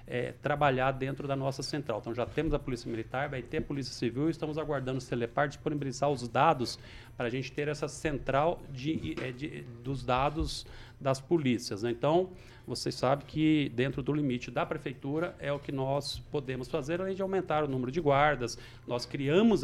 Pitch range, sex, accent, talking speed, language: 120-150 Hz, male, Brazilian, 195 wpm, Portuguese